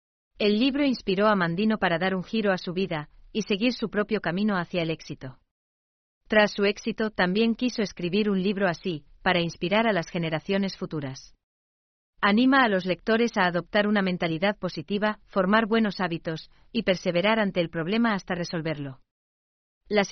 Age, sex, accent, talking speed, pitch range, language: 40-59, female, Spanish, 165 wpm, 165-210 Hz, English